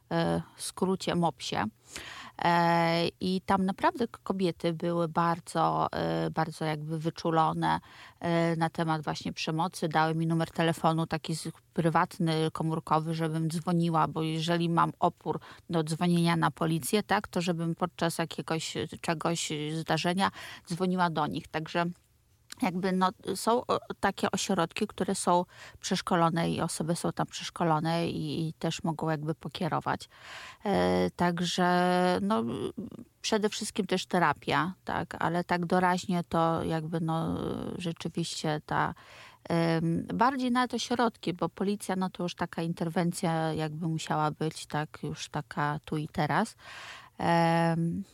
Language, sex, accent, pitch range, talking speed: Polish, female, native, 160-180 Hz, 125 wpm